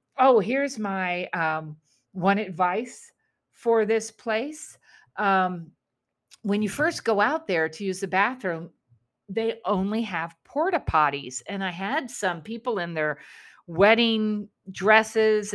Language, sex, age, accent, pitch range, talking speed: English, female, 50-69, American, 160-210 Hz, 130 wpm